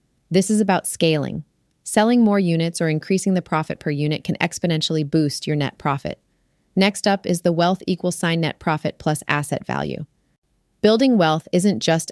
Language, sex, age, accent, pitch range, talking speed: English, female, 30-49, American, 150-185 Hz, 175 wpm